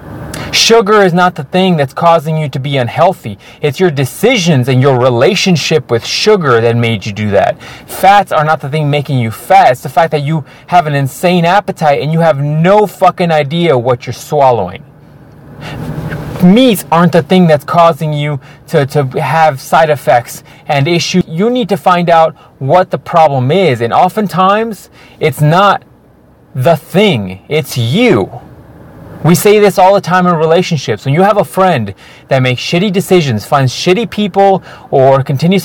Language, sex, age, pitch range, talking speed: English, male, 30-49, 140-175 Hz, 175 wpm